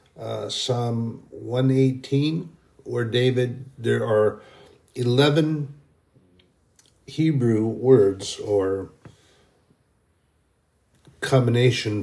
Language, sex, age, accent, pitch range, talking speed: English, male, 60-79, American, 110-135 Hz, 60 wpm